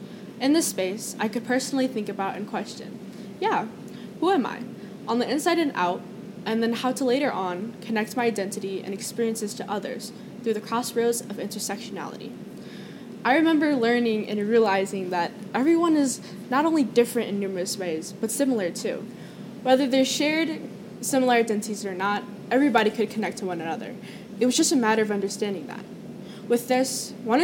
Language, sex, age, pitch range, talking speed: English, female, 10-29, 205-240 Hz, 170 wpm